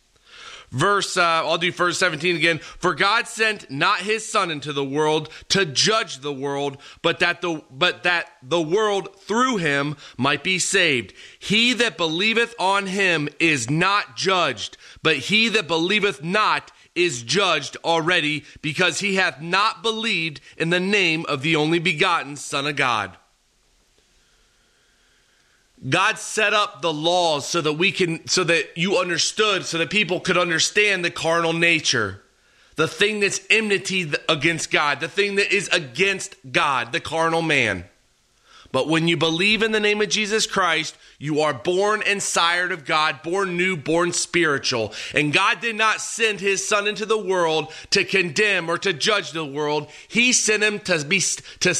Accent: American